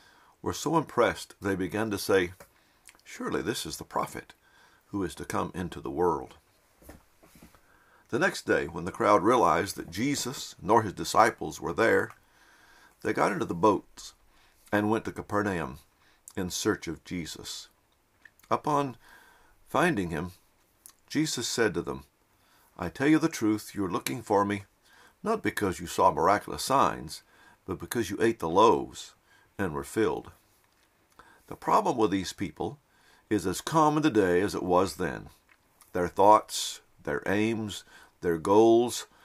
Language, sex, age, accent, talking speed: English, male, 60-79, American, 150 wpm